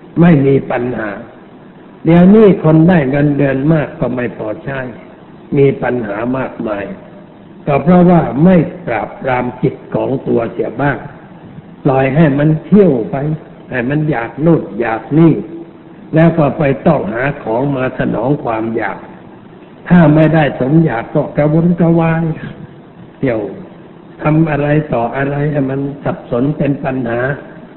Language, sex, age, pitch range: Thai, male, 60-79, 130-165 Hz